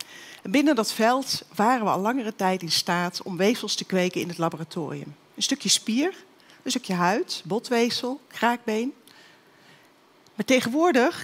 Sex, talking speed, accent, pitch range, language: female, 145 wpm, Dutch, 180-245 Hz, Dutch